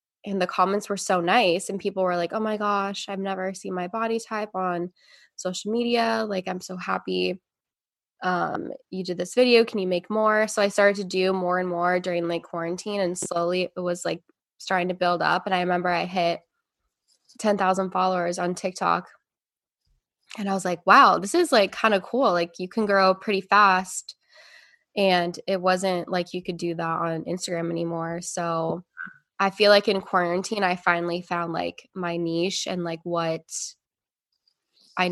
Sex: female